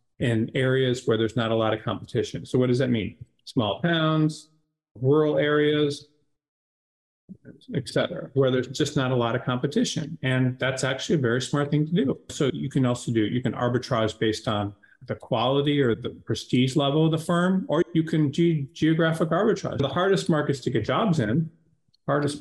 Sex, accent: male, American